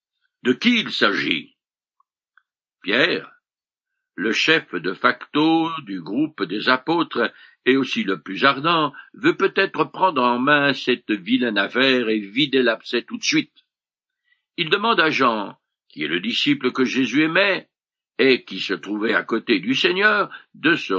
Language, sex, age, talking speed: French, male, 60-79, 150 wpm